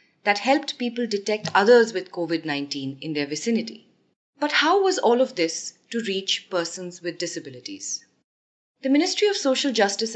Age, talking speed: 30-49, 155 wpm